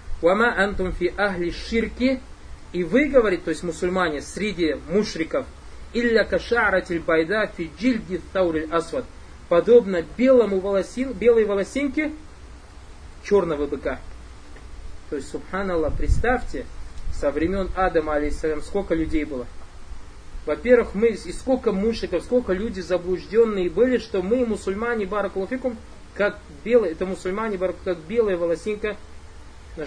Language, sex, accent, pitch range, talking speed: Russian, male, native, 130-195 Hz, 100 wpm